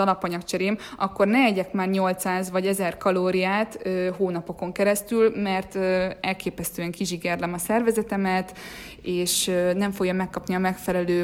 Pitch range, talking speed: 185-215 Hz, 115 wpm